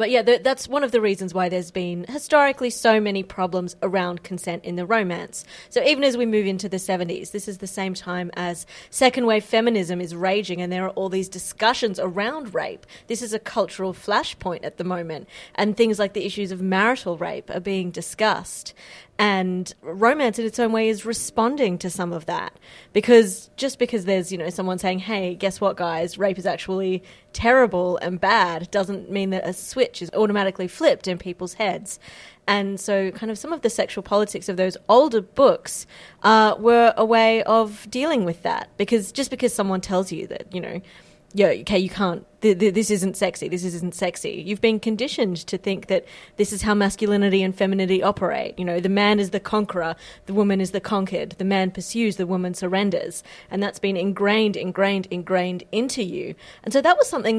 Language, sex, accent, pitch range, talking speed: English, female, Australian, 185-225 Hz, 200 wpm